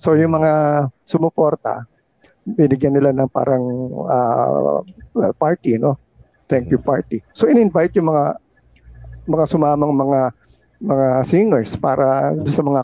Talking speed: 120 wpm